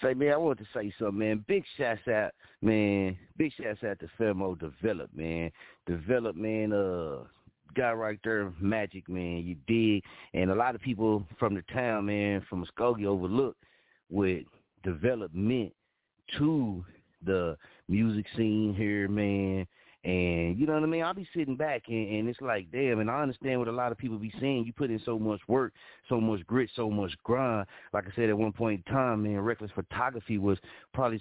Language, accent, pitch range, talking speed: English, American, 105-125 Hz, 190 wpm